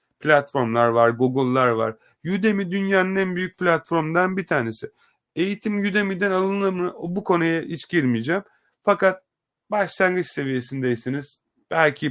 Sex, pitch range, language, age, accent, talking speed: male, 120-165 Hz, Turkish, 30-49, native, 115 wpm